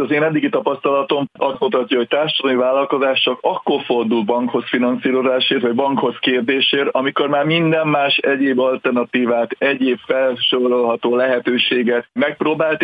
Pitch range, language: 115-140 Hz, Hungarian